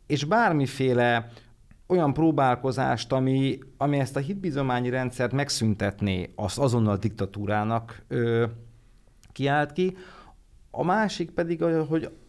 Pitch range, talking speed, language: 105-135 Hz, 105 wpm, Hungarian